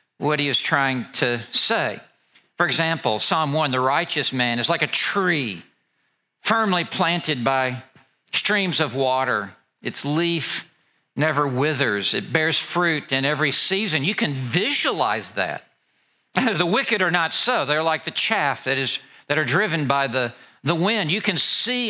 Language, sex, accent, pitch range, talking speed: English, male, American, 130-170 Hz, 160 wpm